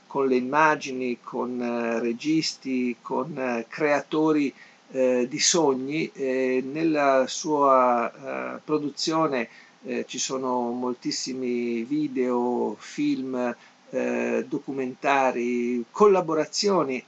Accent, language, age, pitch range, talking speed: native, Italian, 50-69, 125-150 Hz, 80 wpm